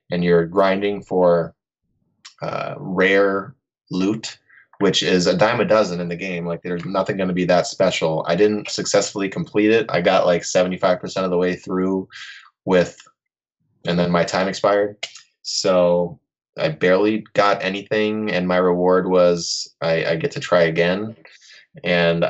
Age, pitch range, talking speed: 20-39, 85-105 Hz, 160 wpm